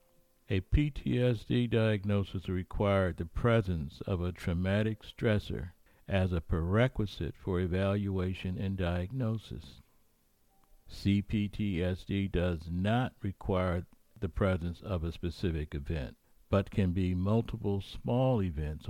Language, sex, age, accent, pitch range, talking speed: English, male, 60-79, American, 90-110 Hz, 105 wpm